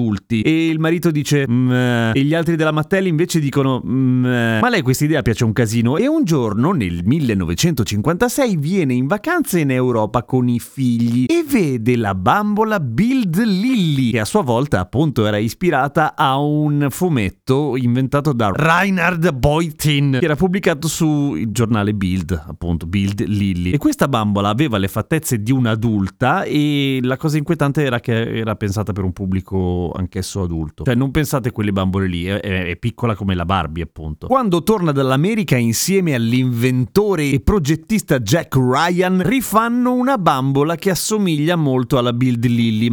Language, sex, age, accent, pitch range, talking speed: Italian, male, 30-49, native, 110-160 Hz, 165 wpm